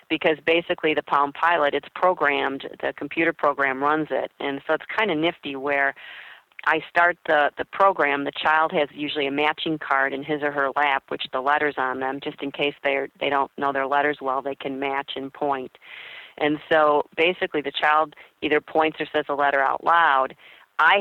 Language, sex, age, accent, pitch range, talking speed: English, female, 40-59, American, 140-155 Hz, 200 wpm